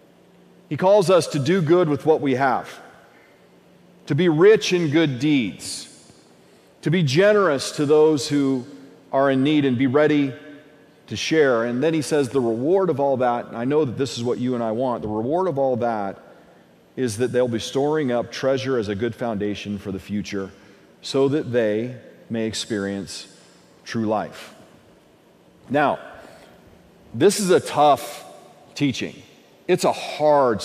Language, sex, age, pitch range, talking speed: English, male, 40-59, 120-155 Hz, 165 wpm